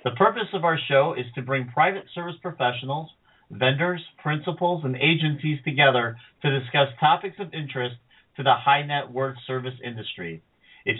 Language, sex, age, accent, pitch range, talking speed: English, male, 50-69, American, 125-155 Hz, 145 wpm